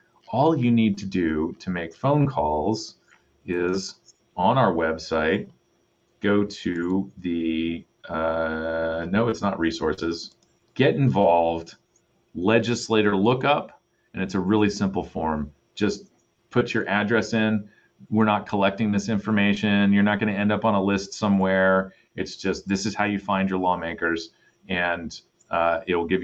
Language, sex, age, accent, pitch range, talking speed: English, male, 40-59, American, 90-105 Hz, 145 wpm